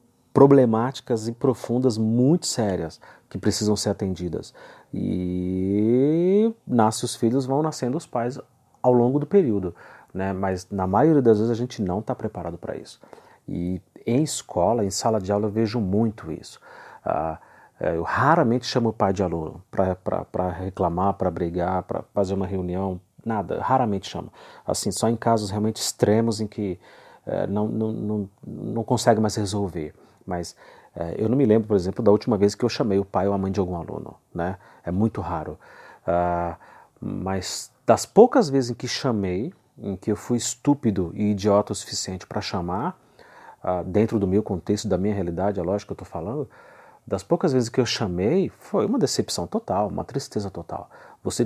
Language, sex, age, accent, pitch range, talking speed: Portuguese, male, 40-59, Brazilian, 95-120 Hz, 180 wpm